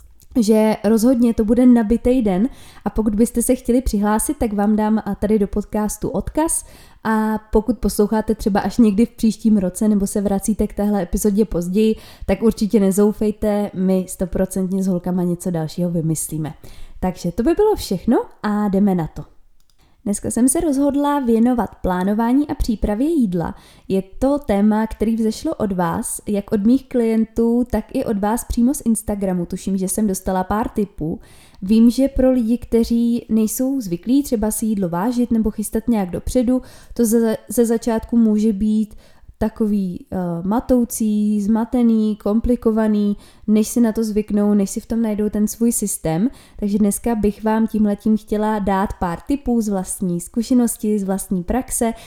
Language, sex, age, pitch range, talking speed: Czech, female, 20-39, 200-235 Hz, 160 wpm